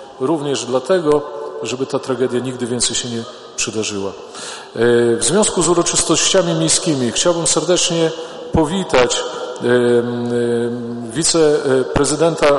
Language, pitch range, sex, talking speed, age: Polish, 130-165 Hz, male, 90 wpm, 40-59